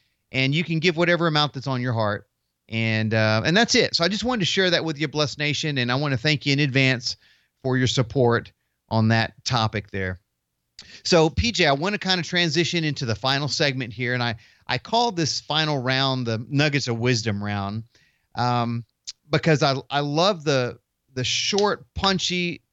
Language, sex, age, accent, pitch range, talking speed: English, male, 30-49, American, 110-155 Hz, 200 wpm